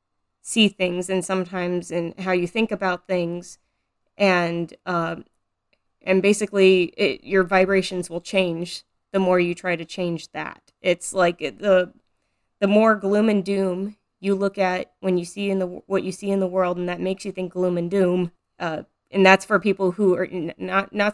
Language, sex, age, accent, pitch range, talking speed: English, female, 20-39, American, 175-195 Hz, 180 wpm